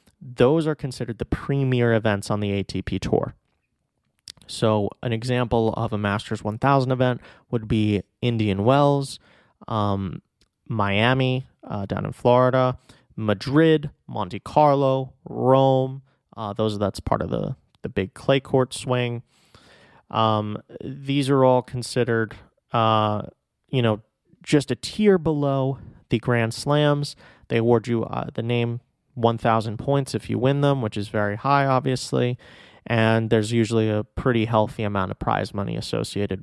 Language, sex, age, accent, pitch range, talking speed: English, male, 30-49, American, 110-130 Hz, 140 wpm